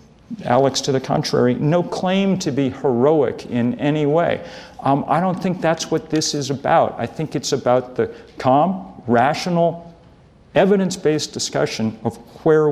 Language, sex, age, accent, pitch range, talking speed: English, male, 50-69, American, 125-185 Hz, 150 wpm